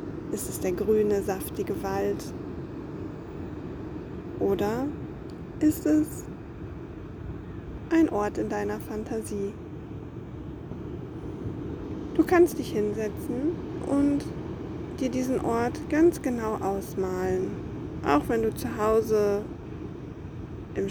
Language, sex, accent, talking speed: German, female, German, 90 wpm